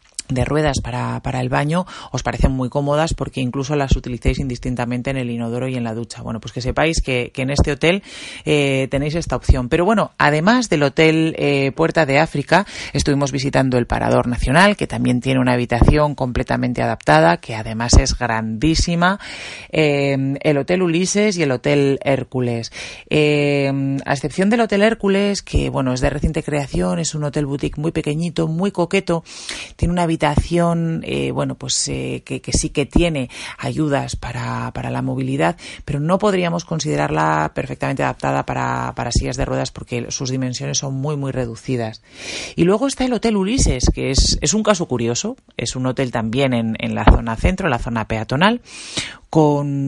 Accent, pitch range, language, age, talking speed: Spanish, 120-160 Hz, Spanish, 40-59, 180 wpm